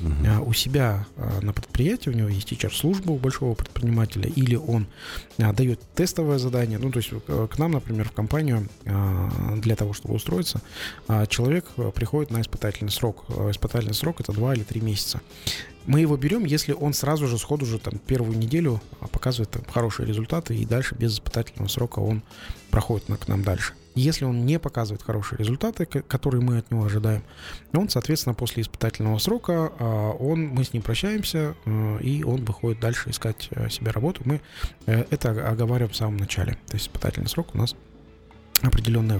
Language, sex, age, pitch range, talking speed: Russian, male, 20-39, 110-130 Hz, 160 wpm